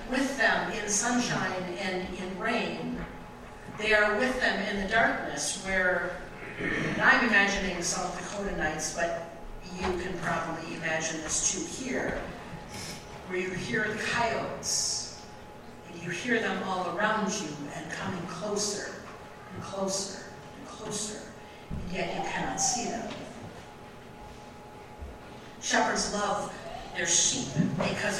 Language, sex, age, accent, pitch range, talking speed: English, female, 50-69, American, 185-225 Hz, 125 wpm